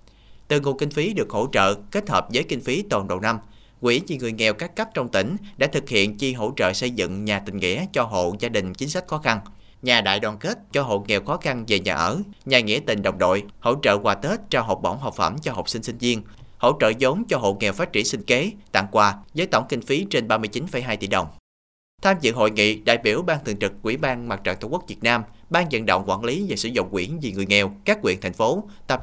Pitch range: 100-135 Hz